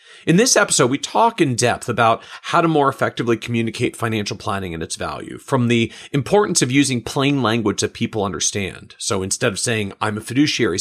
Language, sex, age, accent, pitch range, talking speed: English, male, 40-59, American, 110-145 Hz, 195 wpm